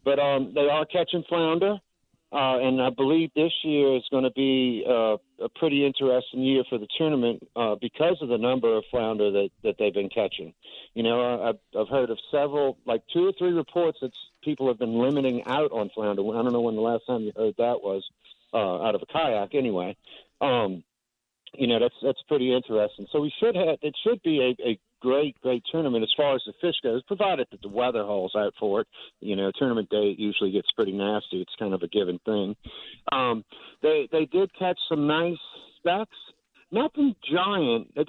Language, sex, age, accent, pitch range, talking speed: English, male, 50-69, American, 115-160 Hz, 205 wpm